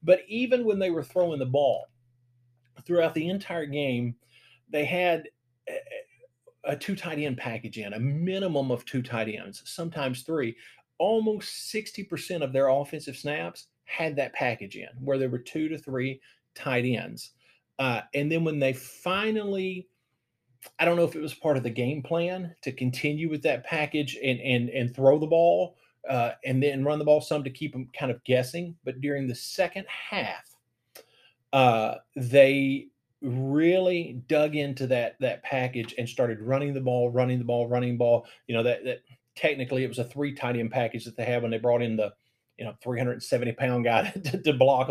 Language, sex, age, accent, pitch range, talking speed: English, male, 40-59, American, 125-160 Hz, 180 wpm